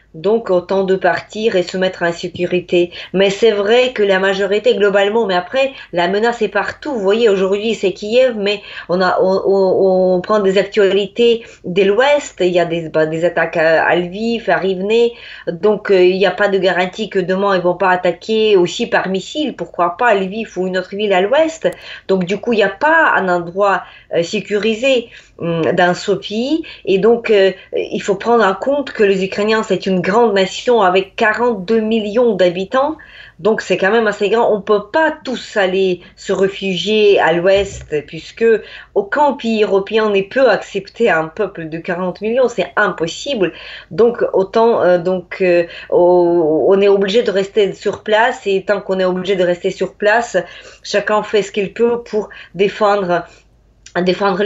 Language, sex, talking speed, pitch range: French, female, 185 wpm, 180-220 Hz